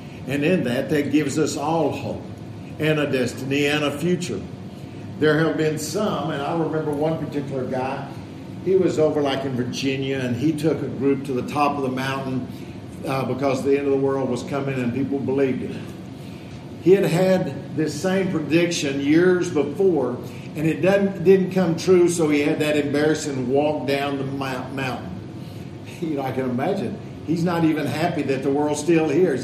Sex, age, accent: male, 50-69, American